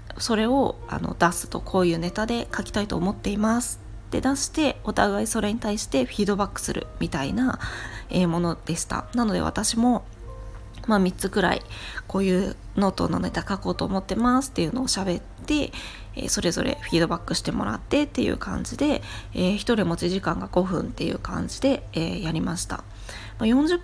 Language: Japanese